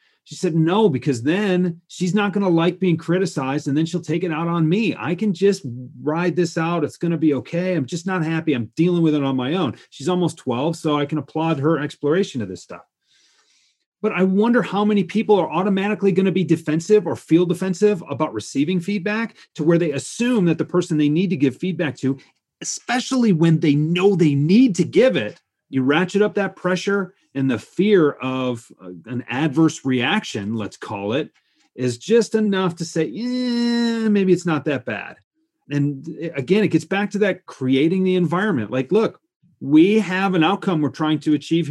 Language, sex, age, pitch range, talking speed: English, male, 30-49, 150-195 Hz, 200 wpm